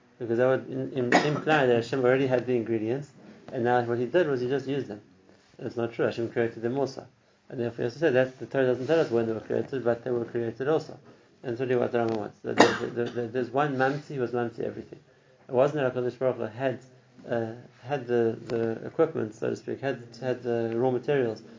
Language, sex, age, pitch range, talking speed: English, male, 30-49, 115-130 Hz, 235 wpm